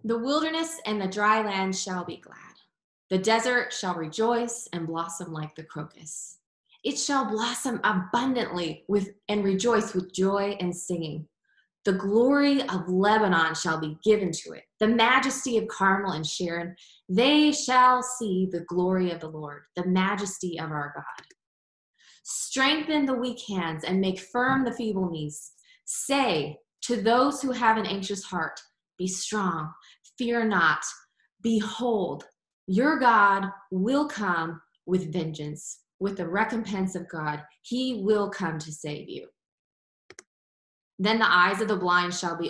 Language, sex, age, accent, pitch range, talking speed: English, female, 20-39, American, 170-230 Hz, 150 wpm